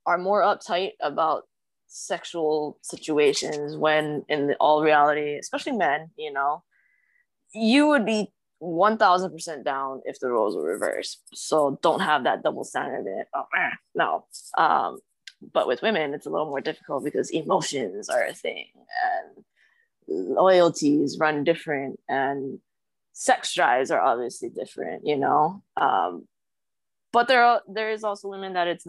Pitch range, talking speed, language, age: 155-220 Hz, 140 wpm, English, 20-39